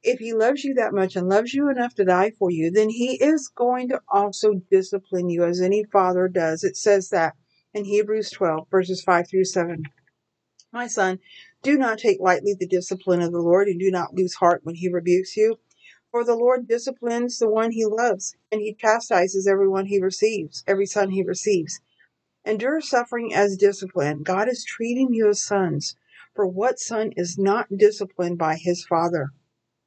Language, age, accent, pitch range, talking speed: English, 50-69, American, 180-220 Hz, 185 wpm